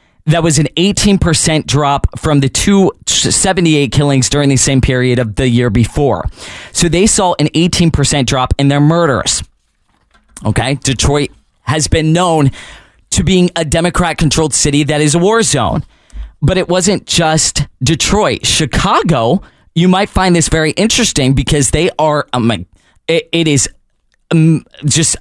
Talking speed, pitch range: 155 wpm, 130-165 Hz